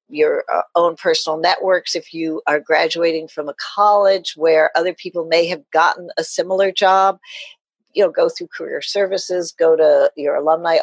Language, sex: English, female